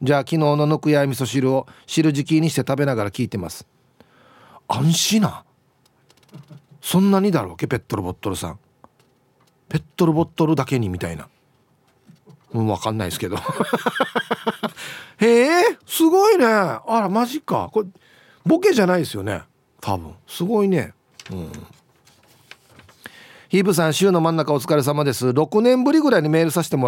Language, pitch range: Japanese, 120-190 Hz